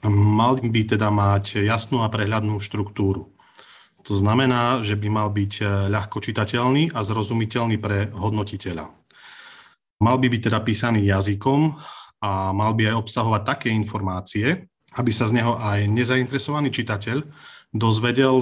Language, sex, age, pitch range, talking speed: Slovak, male, 30-49, 105-125 Hz, 130 wpm